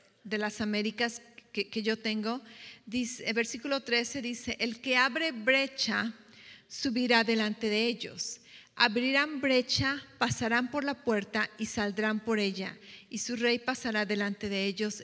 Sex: female